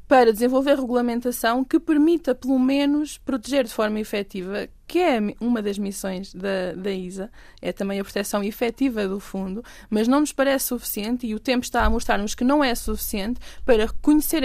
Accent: Brazilian